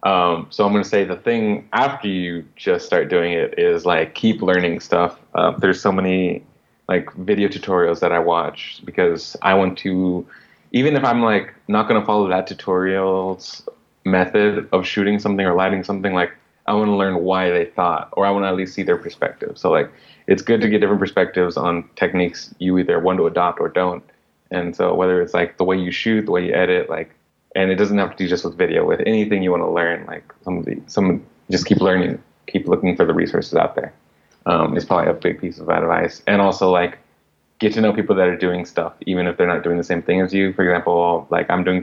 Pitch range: 90-110 Hz